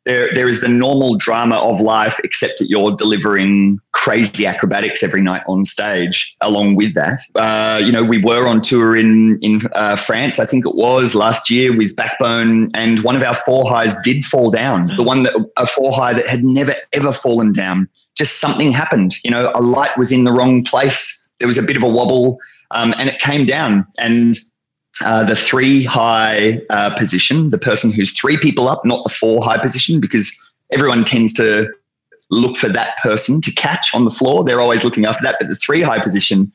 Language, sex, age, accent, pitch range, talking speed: English, male, 20-39, Australian, 110-130 Hz, 205 wpm